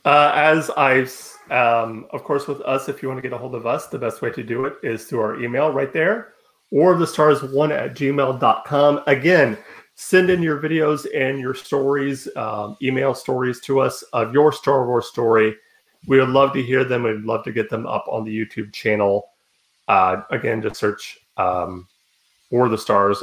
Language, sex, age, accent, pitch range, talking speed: English, male, 30-49, American, 110-140 Hz, 200 wpm